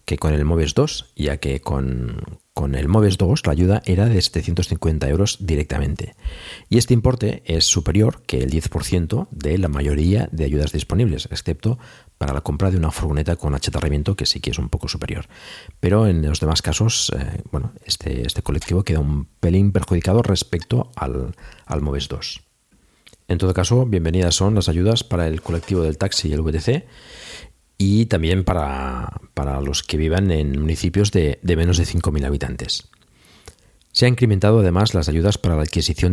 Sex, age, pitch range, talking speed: male, 50-69, 75-100 Hz, 175 wpm